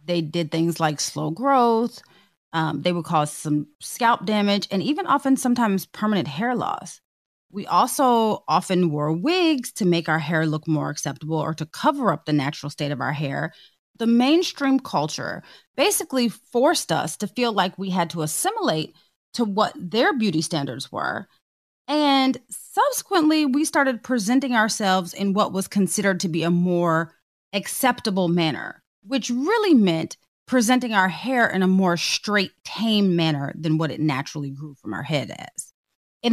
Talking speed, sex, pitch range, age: 165 wpm, female, 165-250 Hz, 30-49